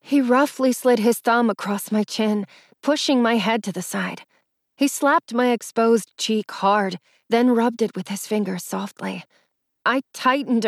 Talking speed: 165 wpm